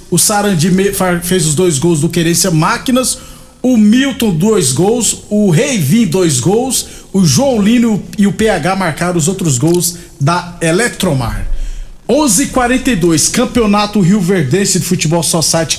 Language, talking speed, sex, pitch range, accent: Portuguese, 140 wpm, male, 175-215 Hz, Brazilian